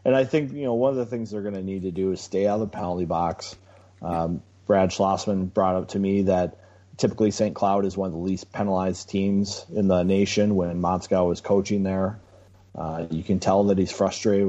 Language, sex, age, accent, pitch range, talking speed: English, male, 30-49, American, 90-105 Hz, 230 wpm